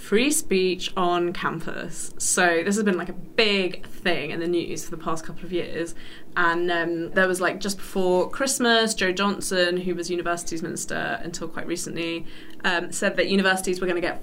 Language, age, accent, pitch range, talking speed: English, 20-39, British, 175-240 Hz, 195 wpm